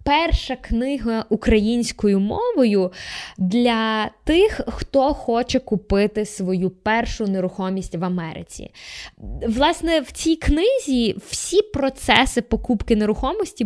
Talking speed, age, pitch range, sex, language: 95 wpm, 20-39, 185-235 Hz, female, Ukrainian